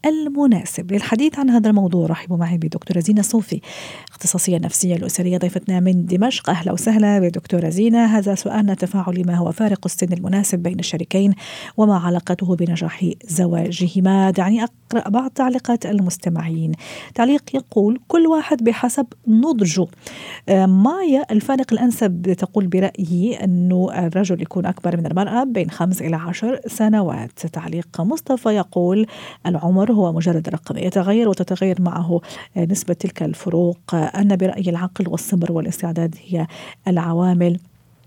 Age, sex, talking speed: 50-69, female, 130 wpm